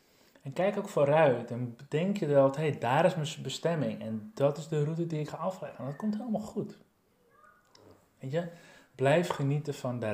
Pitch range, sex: 130-170 Hz, male